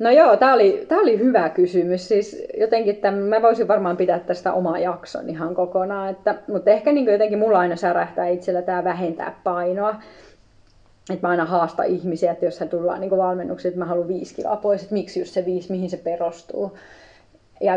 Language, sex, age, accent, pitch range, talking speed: Finnish, female, 20-39, native, 175-200 Hz, 180 wpm